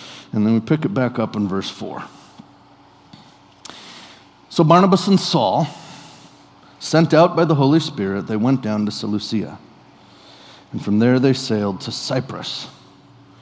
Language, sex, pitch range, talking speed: English, male, 115-160 Hz, 145 wpm